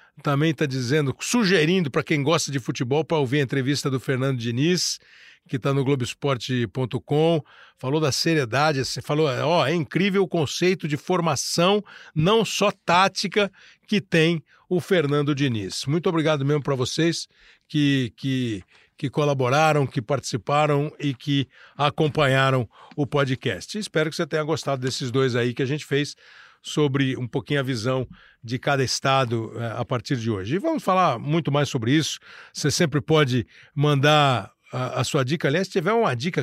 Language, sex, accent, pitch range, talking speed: Portuguese, male, Brazilian, 130-155 Hz, 165 wpm